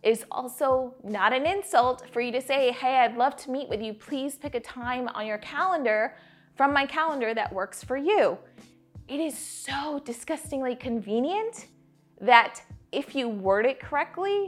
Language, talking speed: English, 170 wpm